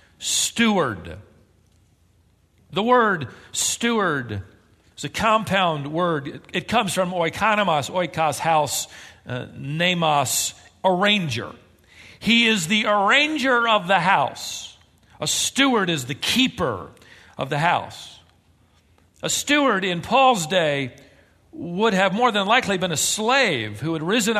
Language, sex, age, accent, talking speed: English, male, 50-69, American, 120 wpm